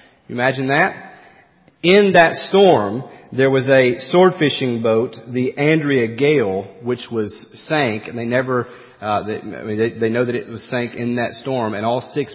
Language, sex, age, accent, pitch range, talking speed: English, male, 40-59, American, 120-175 Hz, 175 wpm